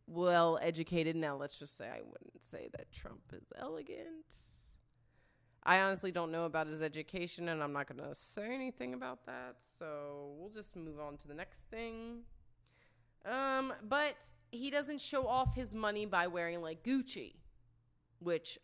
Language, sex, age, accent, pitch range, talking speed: English, female, 30-49, American, 155-255 Hz, 160 wpm